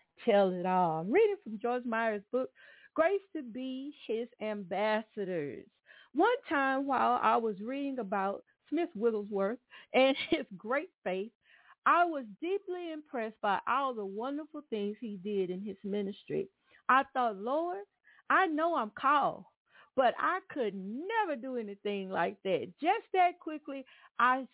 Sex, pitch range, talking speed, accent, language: female, 220-310 Hz, 145 wpm, American, English